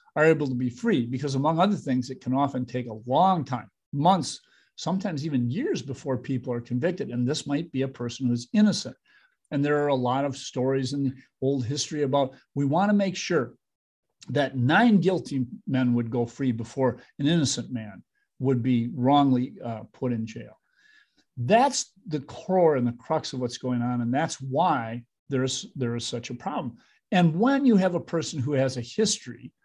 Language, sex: English, male